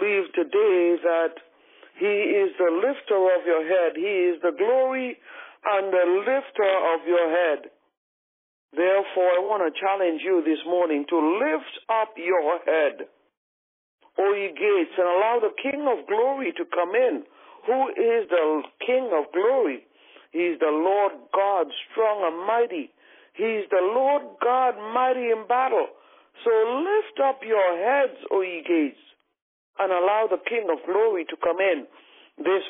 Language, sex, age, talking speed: English, male, 60-79, 160 wpm